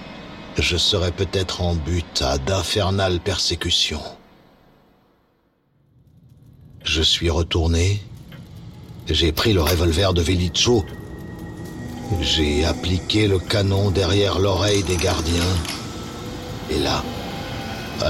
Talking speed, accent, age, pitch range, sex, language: 95 wpm, French, 60-79, 85-105 Hz, male, French